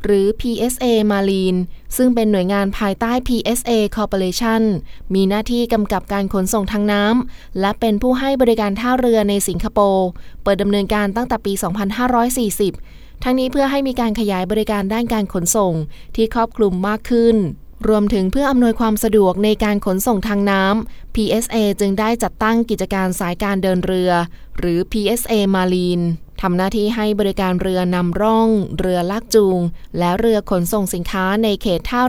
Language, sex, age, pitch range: Thai, female, 20-39, 185-225 Hz